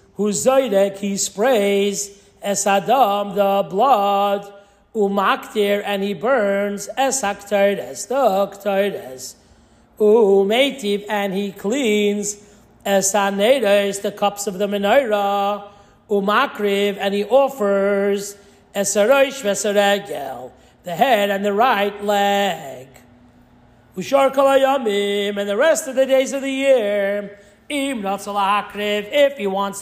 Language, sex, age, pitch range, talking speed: English, male, 40-59, 200-210 Hz, 105 wpm